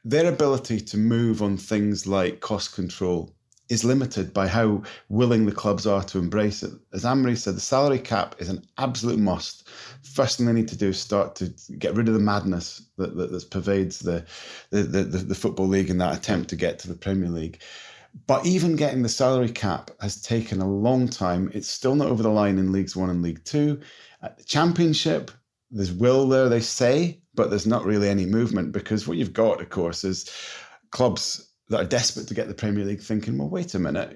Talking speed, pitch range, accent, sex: 215 wpm, 95-125 Hz, British, male